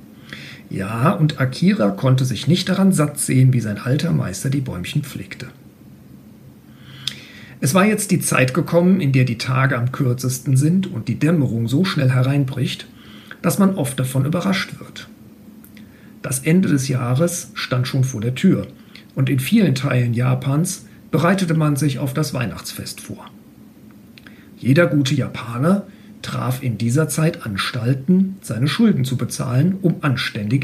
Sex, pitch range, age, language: male, 130-170 Hz, 50-69, German